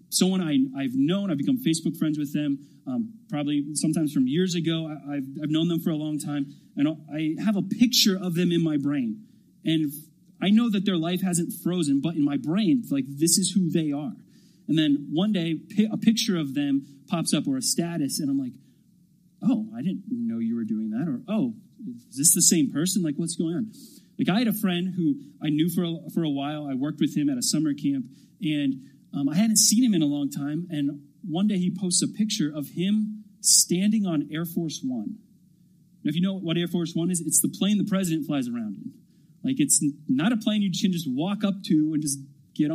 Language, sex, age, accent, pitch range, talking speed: English, male, 30-49, American, 160-220 Hz, 225 wpm